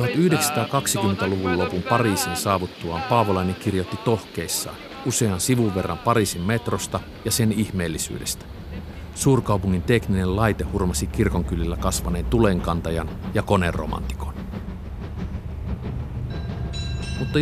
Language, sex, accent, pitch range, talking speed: Finnish, male, native, 90-120 Hz, 85 wpm